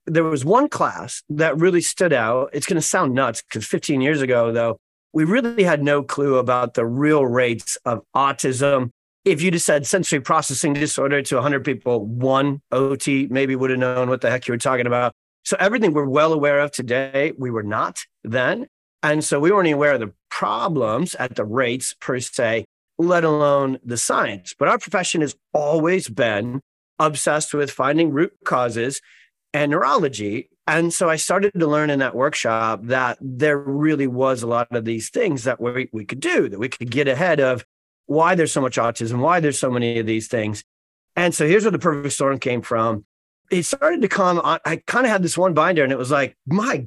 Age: 40-59